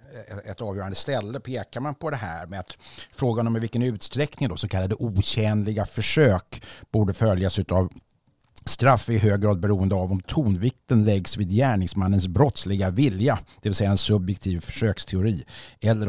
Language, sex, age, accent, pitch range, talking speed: Swedish, male, 60-79, native, 95-120 Hz, 160 wpm